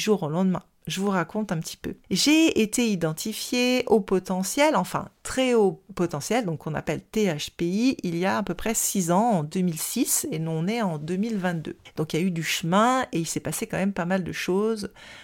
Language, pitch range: French, 175-230 Hz